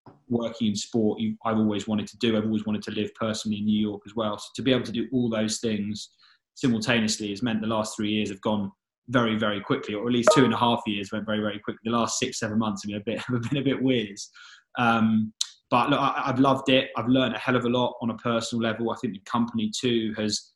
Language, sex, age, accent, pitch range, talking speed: English, male, 20-39, British, 105-115 Hz, 265 wpm